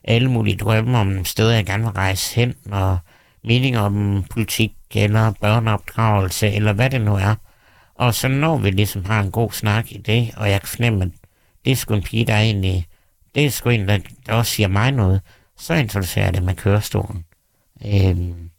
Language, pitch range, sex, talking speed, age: Danish, 95-115 Hz, male, 185 wpm, 60-79